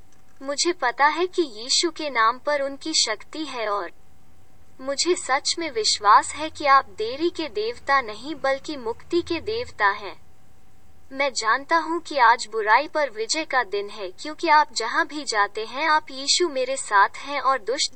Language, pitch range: English, 245-325 Hz